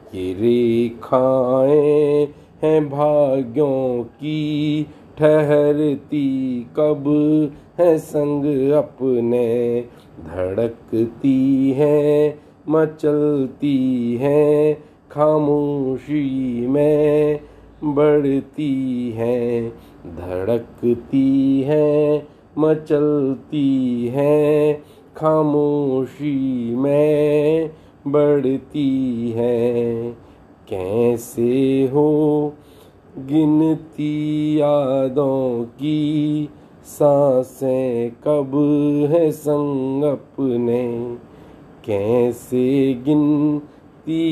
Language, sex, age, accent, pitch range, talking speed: Hindi, male, 50-69, native, 125-150 Hz, 50 wpm